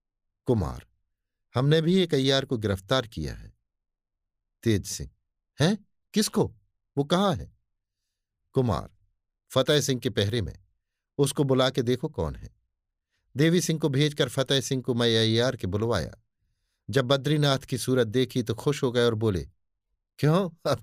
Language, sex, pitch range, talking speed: Hindi, male, 95-145 Hz, 150 wpm